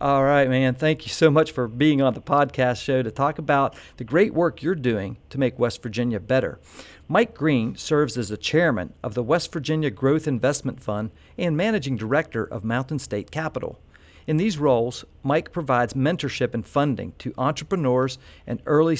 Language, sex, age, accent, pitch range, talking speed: English, male, 50-69, American, 115-150 Hz, 185 wpm